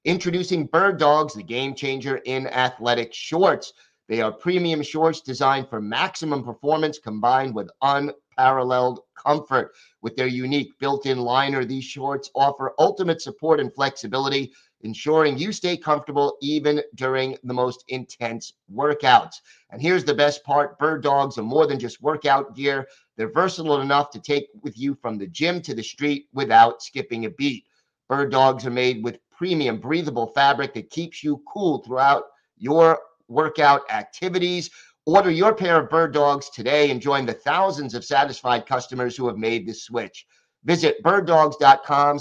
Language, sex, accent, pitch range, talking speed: English, male, American, 125-160 Hz, 155 wpm